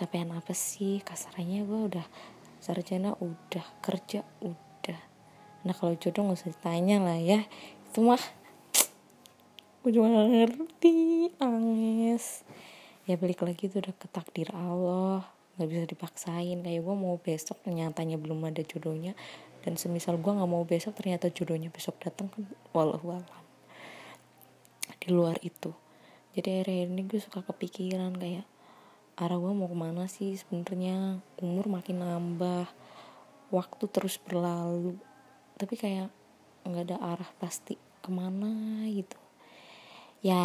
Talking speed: 125 wpm